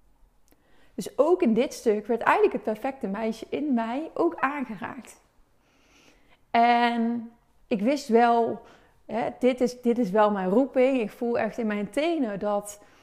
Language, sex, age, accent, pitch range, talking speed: Dutch, female, 30-49, Dutch, 230-265 Hz, 145 wpm